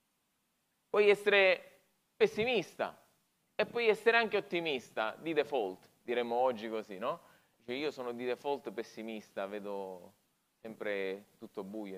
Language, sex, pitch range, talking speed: Italian, male, 135-220 Hz, 120 wpm